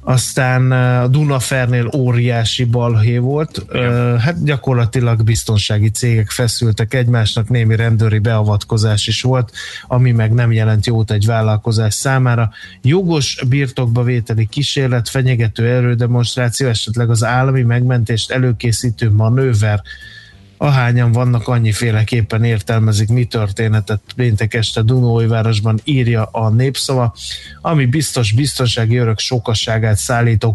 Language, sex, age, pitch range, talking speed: Hungarian, male, 20-39, 110-125 Hz, 110 wpm